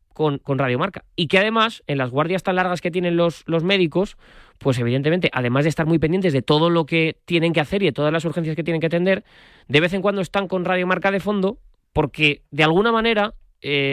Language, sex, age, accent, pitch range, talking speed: Spanish, male, 20-39, Spanish, 145-195 Hz, 230 wpm